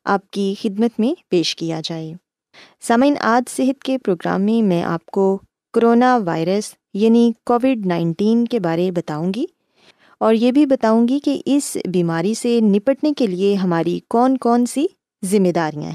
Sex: female